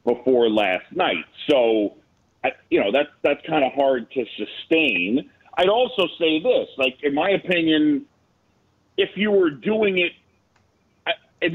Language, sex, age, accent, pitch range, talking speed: English, male, 40-59, American, 140-200 Hz, 150 wpm